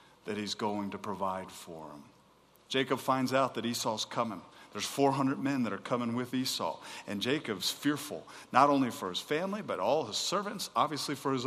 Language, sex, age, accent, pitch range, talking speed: English, male, 40-59, American, 115-150 Hz, 190 wpm